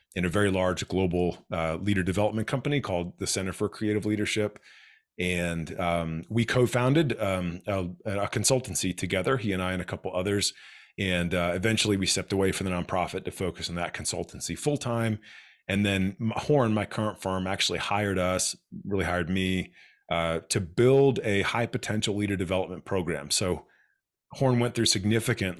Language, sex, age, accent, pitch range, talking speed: English, male, 30-49, American, 90-105 Hz, 170 wpm